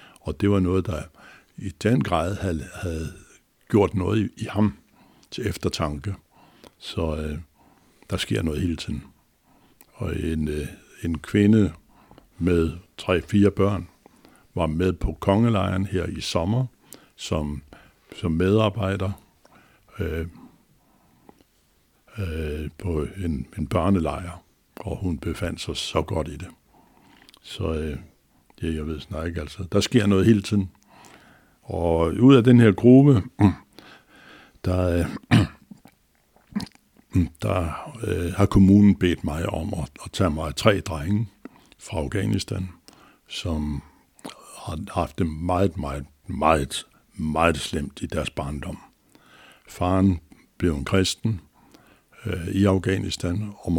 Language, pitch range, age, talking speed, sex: Danish, 80-100 Hz, 60-79, 120 wpm, male